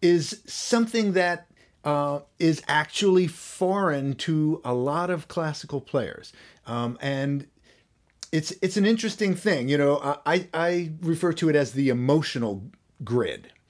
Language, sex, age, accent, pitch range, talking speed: English, male, 40-59, American, 125-160 Hz, 135 wpm